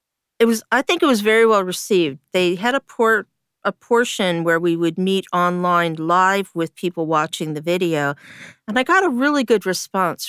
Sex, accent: female, American